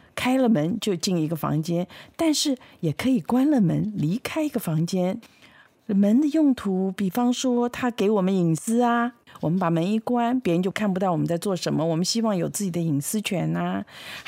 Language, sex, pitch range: Chinese, female, 170-225 Hz